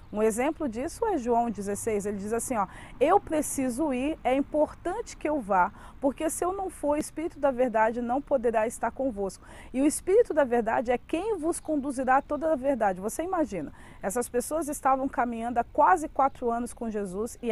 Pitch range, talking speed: 205-270 Hz, 195 wpm